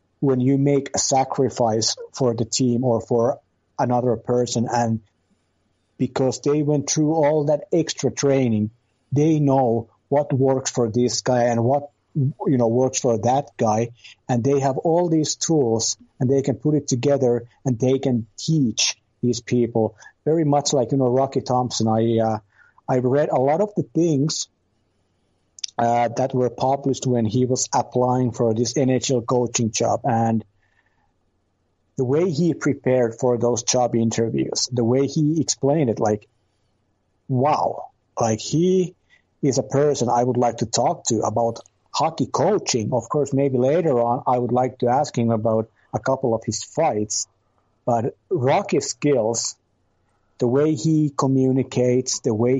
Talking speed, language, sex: 160 wpm, English, male